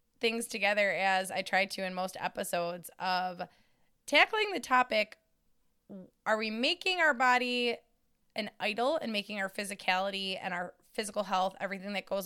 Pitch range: 185-225 Hz